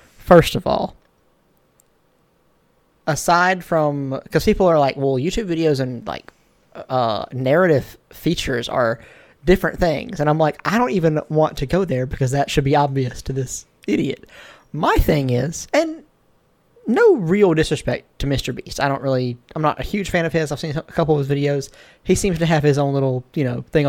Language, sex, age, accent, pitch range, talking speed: English, male, 20-39, American, 145-210 Hz, 190 wpm